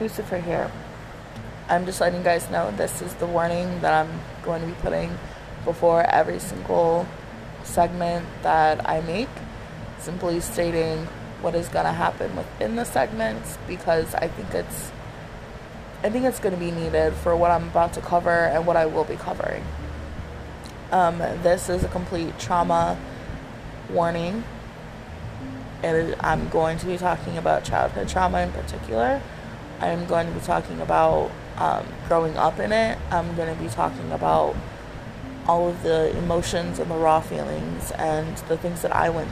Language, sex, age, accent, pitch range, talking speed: English, female, 20-39, American, 140-175 Hz, 160 wpm